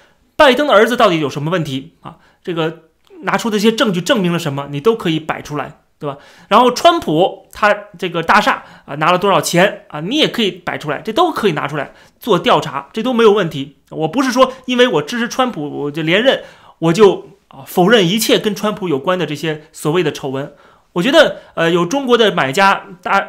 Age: 30-49